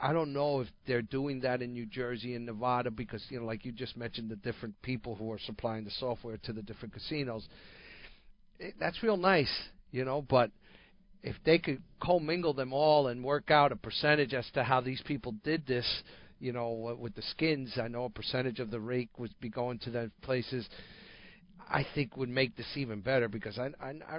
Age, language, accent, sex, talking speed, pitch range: 50-69, English, American, male, 210 wpm, 120-145 Hz